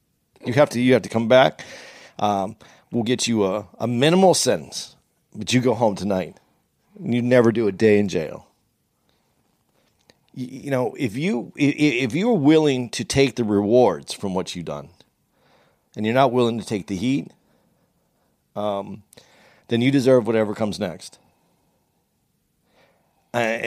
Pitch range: 105-140 Hz